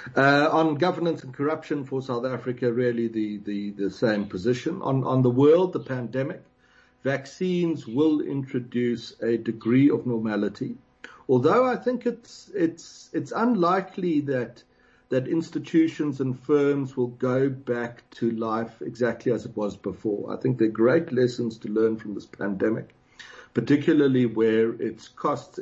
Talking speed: 150 wpm